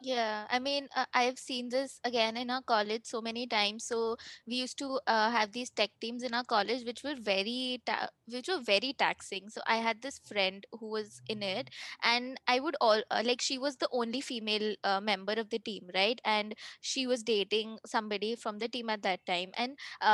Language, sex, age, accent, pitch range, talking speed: English, female, 20-39, Indian, 215-260 Hz, 215 wpm